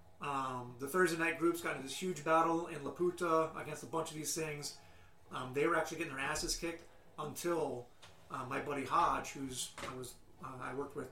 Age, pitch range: 30-49, 130-160 Hz